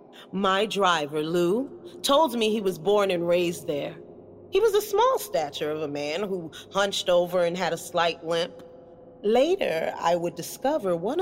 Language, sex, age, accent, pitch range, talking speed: English, female, 40-59, American, 175-290 Hz, 170 wpm